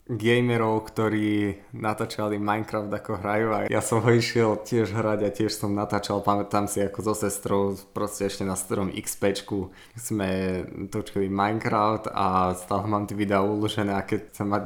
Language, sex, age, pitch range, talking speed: Slovak, male, 20-39, 100-115 Hz, 170 wpm